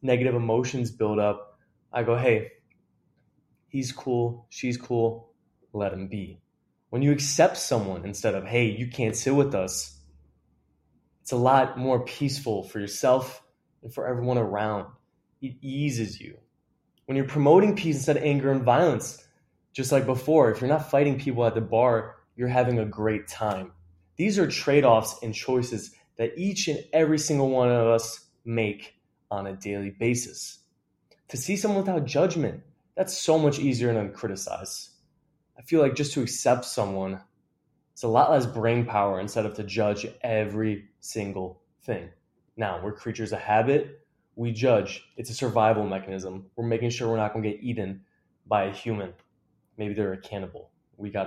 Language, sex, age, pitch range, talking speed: English, male, 20-39, 105-135 Hz, 165 wpm